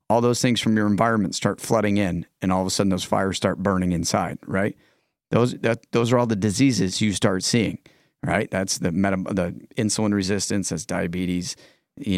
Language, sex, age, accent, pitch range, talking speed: English, male, 40-59, American, 100-130 Hz, 195 wpm